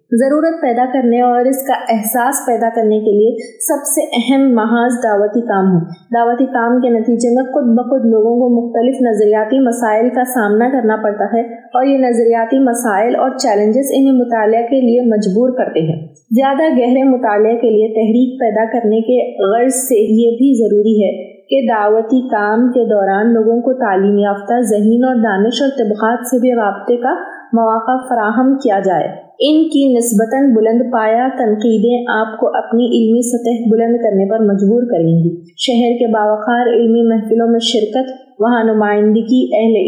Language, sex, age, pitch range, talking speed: Urdu, female, 20-39, 220-250 Hz, 170 wpm